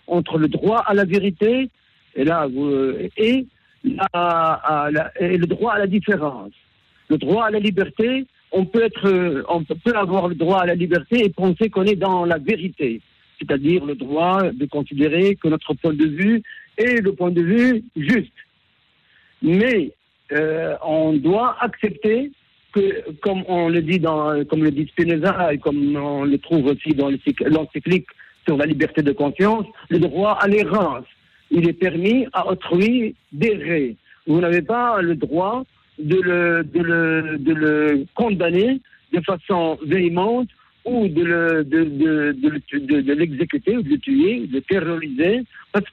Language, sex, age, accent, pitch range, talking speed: French, male, 50-69, French, 155-205 Hz, 170 wpm